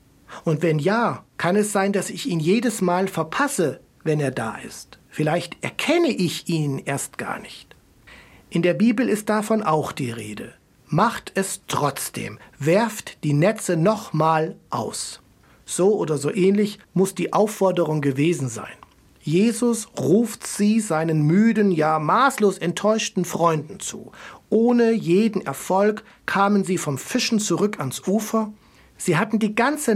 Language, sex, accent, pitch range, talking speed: German, male, German, 165-220 Hz, 145 wpm